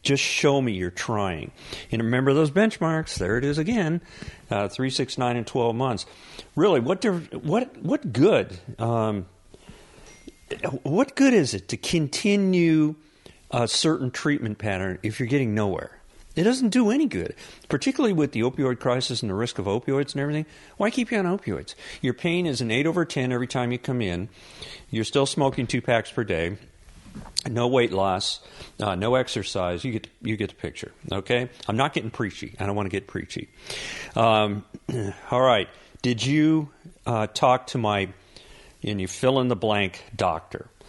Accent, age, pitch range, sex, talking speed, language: American, 50-69, 110-155 Hz, male, 180 wpm, English